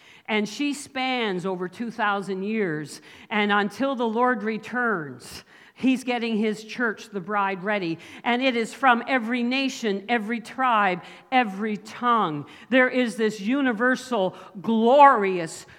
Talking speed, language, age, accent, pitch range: 125 wpm, English, 50-69, American, 210-280 Hz